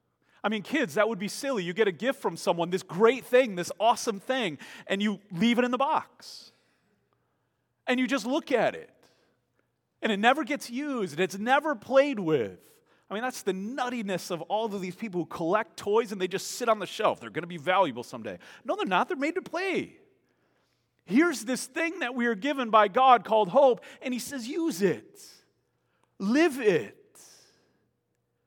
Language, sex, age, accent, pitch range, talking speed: English, male, 40-59, American, 210-275 Hz, 195 wpm